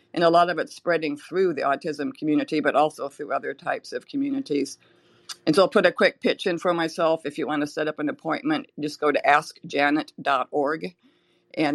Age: 50-69